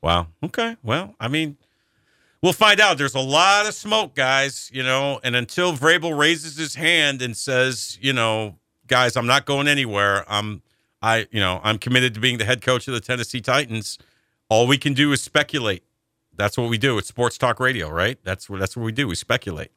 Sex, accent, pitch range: male, American, 105-135 Hz